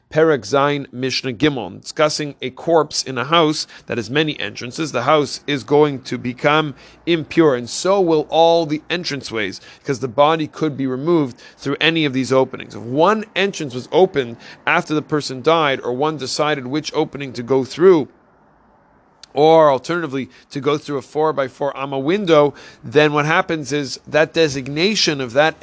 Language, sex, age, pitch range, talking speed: English, male, 40-59, 130-155 Hz, 175 wpm